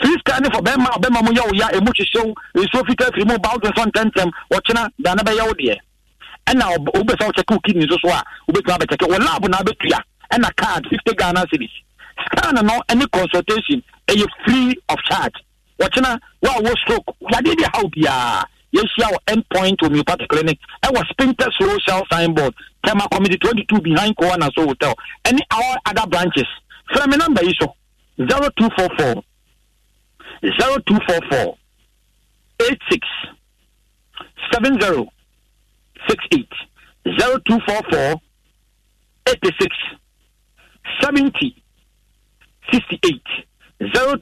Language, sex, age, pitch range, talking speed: English, male, 50-69, 180-255 Hz, 100 wpm